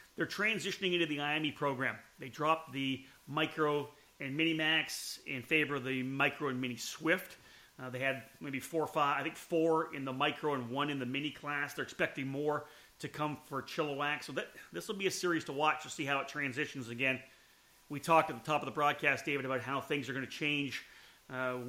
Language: English